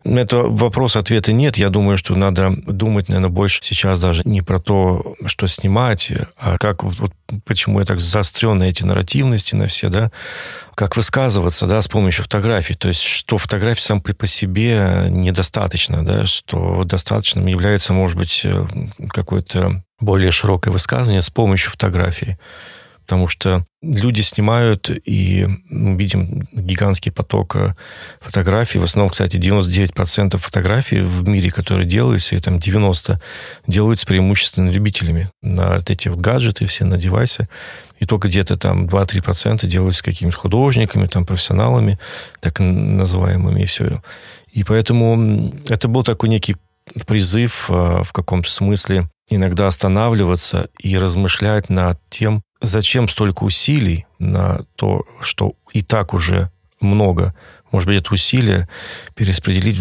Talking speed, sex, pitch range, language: 140 wpm, male, 95-110 Hz, Russian